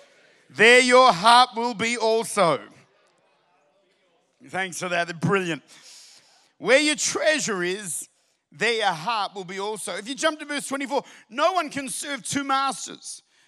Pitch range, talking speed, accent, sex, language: 185-245 Hz, 140 wpm, Australian, male, English